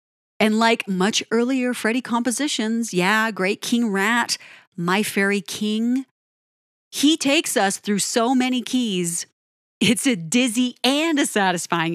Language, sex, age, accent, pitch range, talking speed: English, female, 40-59, American, 180-240 Hz, 130 wpm